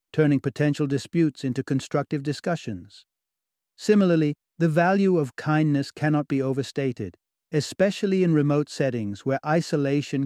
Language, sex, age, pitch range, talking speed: English, male, 60-79, 130-150 Hz, 115 wpm